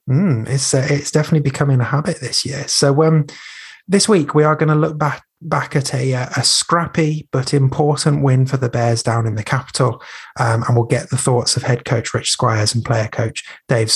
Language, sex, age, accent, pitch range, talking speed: English, male, 30-49, British, 120-150 Hz, 215 wpm